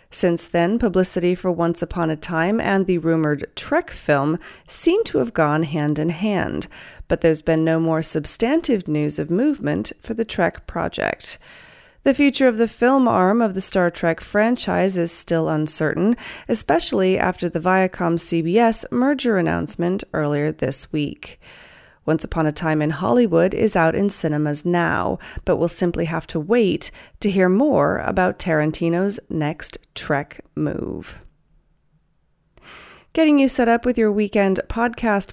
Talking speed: 150 wpm